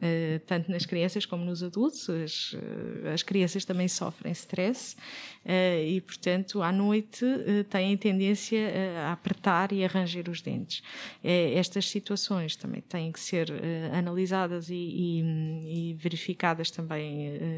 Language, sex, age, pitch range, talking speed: Portuguese, female, 20-39, 170-195 Hz, 125 wpm